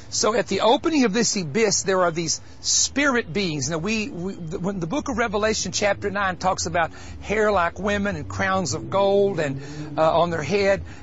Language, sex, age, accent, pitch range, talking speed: English, male, 50-69, American, 160-205 Hz, 200 wpm